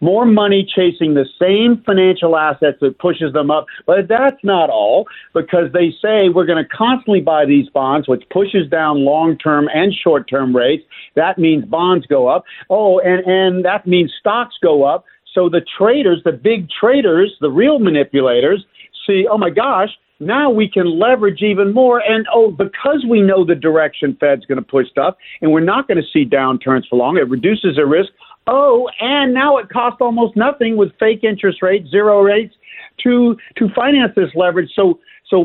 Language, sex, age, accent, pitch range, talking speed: English, male, 50-69, American, 160-220 Hz, 180 wpm